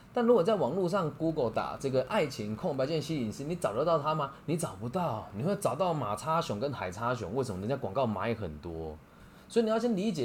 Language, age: Chinese, 20-39